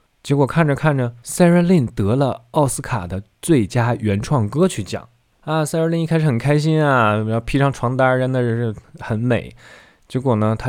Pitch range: 100-125 Hz